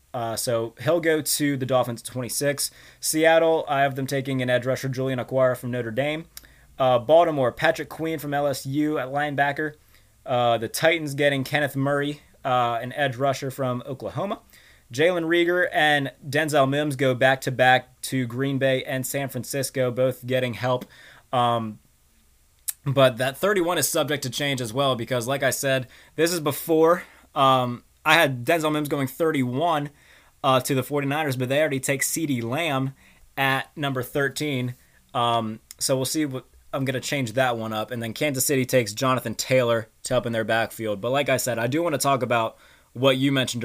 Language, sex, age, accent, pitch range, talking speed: English, male, 20-39, American, 125-145 Hz, 180 wpm